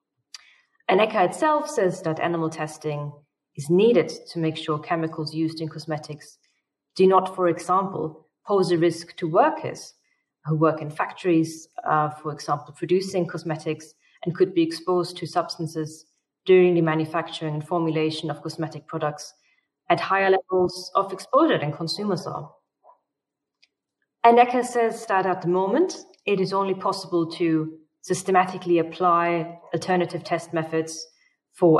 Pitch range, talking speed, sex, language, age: 160-195 Hz, 135 wpm, female, English, 30-49